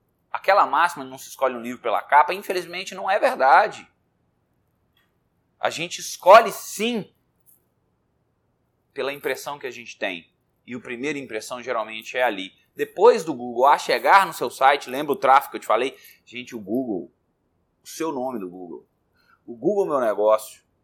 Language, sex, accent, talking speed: Portuguese, male, Brazilian, 165 wpm